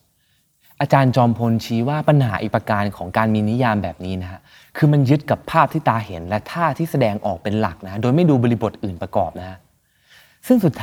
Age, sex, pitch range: 20-39, male, 95-130 Hz